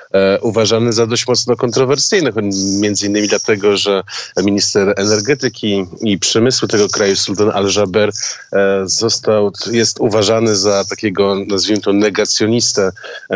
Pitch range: 100-115 Hz